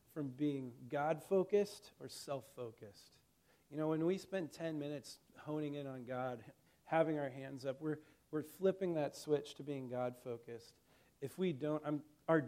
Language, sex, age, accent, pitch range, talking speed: English, male, 40-59, American, 130-160 Hz, 160 wpm